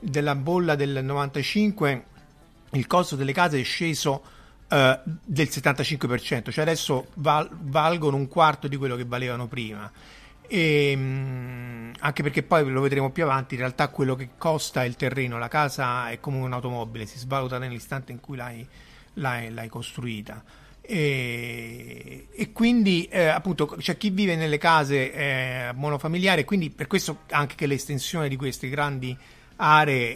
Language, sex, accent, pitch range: Italian, male, native, 120-150 Hz